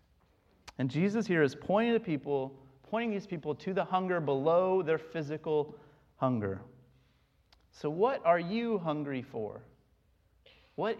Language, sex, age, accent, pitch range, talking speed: English, male, 30-49, American, 120-170 Hz, 130 wpm